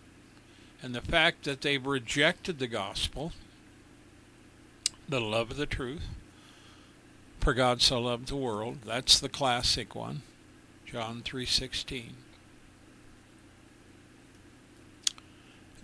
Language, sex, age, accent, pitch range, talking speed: English, male, 60-79, American, 115-150 Hz, 95 wpm